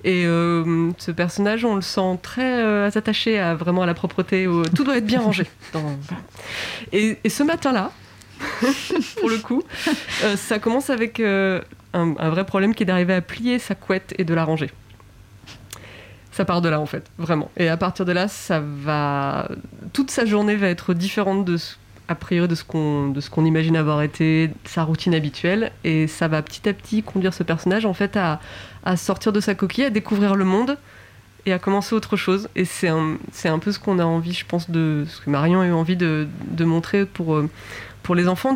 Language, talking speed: French, 215 wpm